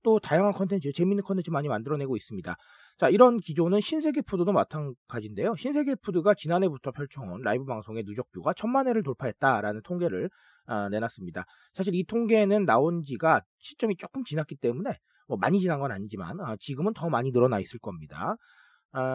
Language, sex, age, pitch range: Korean, male, 40-59, 135-220 Hz